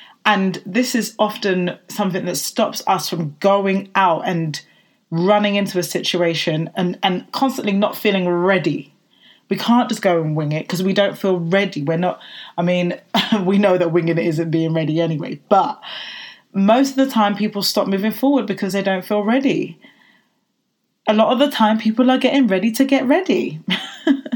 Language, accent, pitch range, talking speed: English, British, 180-230 Hz, 180 wpm